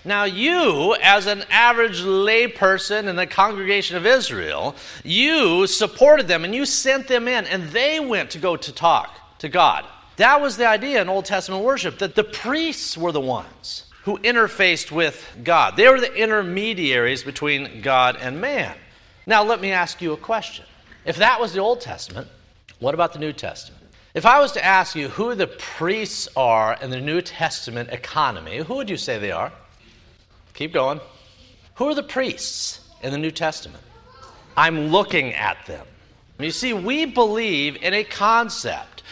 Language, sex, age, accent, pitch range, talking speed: English, male, 50-69, American, 155-225 Hz, 175 wpm